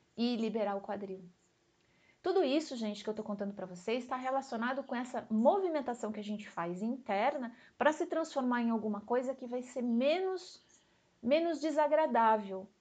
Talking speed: 165 wpm